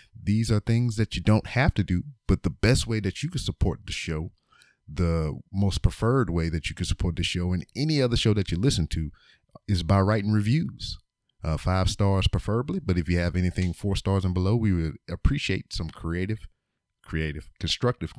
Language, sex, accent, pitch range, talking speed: English, male, American, 85-110 Hz, 200 wpm